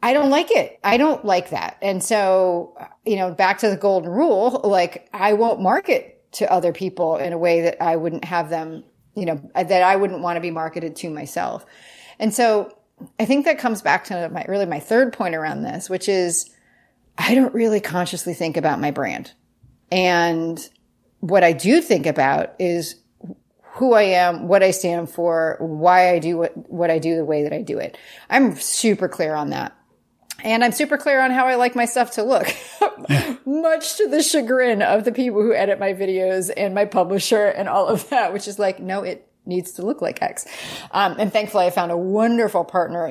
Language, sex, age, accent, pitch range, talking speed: English, female, 30-49, American, 170-225 Hz, 205 wpm